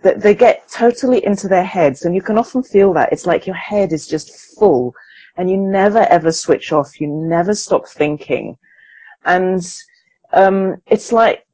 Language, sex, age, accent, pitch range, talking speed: English, female, 40-59, British, 150-195 Hz, 175 wpm